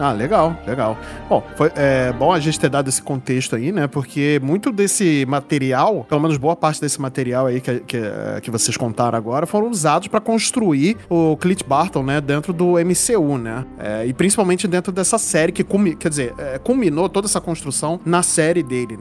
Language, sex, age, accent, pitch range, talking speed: Portuguese, male, 20-39, Brazilian, 135-175 Hz, 195 wpm